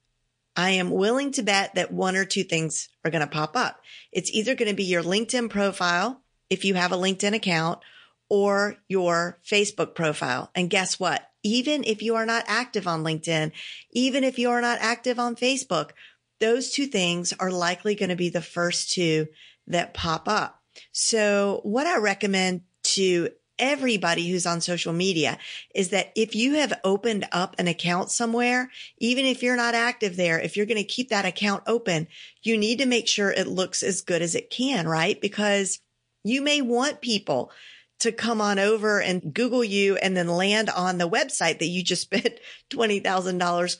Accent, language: American, English